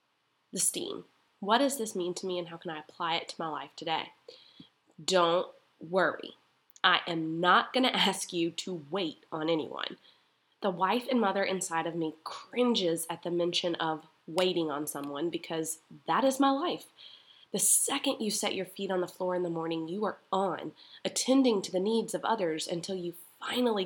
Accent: American